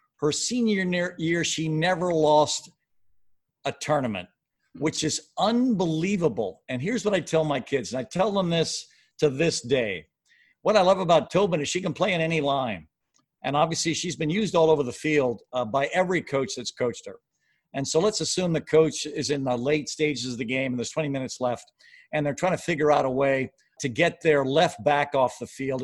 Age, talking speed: 50-69, 205 wpm